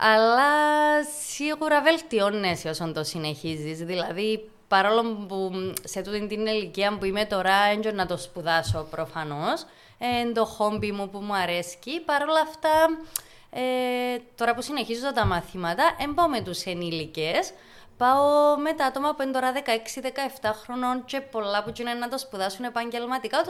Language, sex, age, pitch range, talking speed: Greek, female, 20-39, 190-270 Hz, 150 wpm